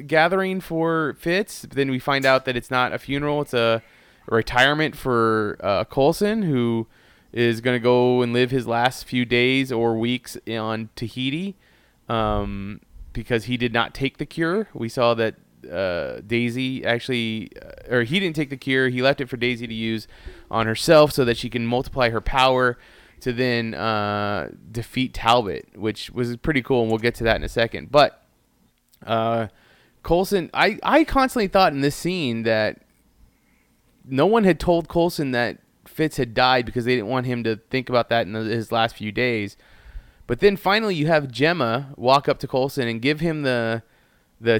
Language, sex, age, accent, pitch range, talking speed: English, male, 20-39, American, 115-150 Hz, 185 wpm